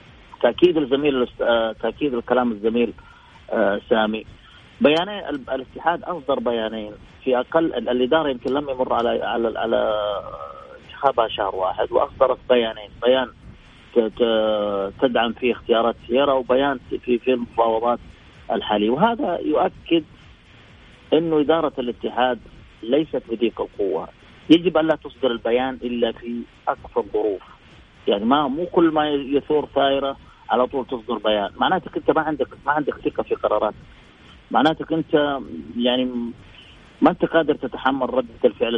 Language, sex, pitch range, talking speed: Arabic, male, 115-150 Hz, 120 wpm